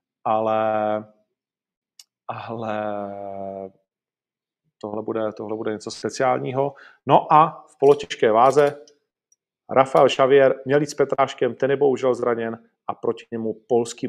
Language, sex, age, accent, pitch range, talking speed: Czech, male, 40-59, native, 115-145 Hz, 110 wpm